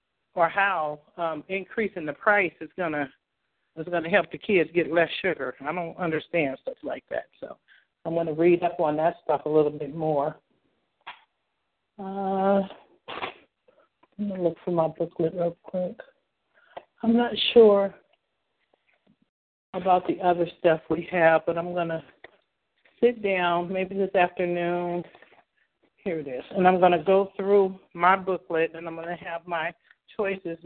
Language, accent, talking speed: English, American, 160 wpm